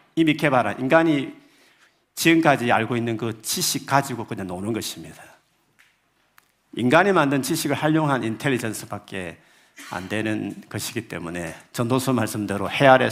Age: 50-69